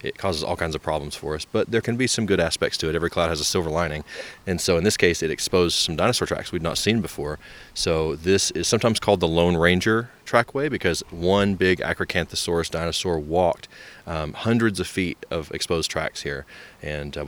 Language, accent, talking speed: English, American, 215 wpm